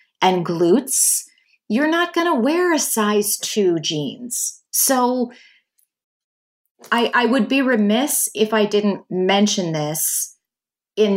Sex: female